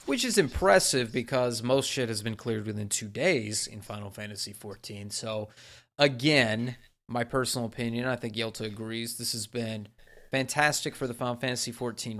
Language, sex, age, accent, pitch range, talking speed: English, male, 30-49, American, 110-135 Hz, 165 wpm